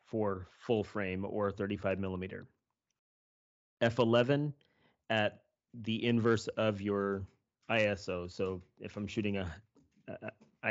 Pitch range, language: 95-110 Hz, English